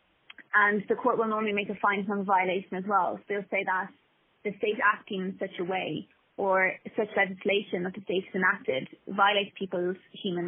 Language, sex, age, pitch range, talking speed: English, female, 20-39, 185-205 Hz, 190 wpm